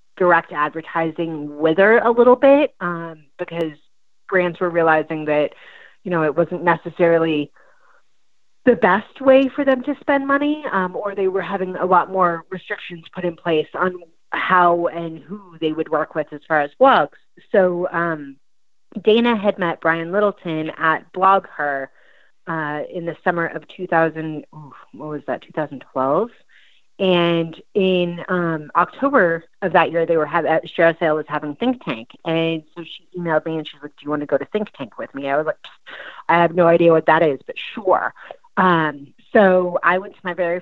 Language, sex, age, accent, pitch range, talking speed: English, female, 30-49, American, 160-190 Hz, 180 wpm